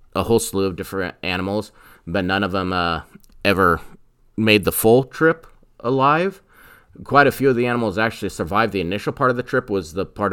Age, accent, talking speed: 30-49, American, 200 wpm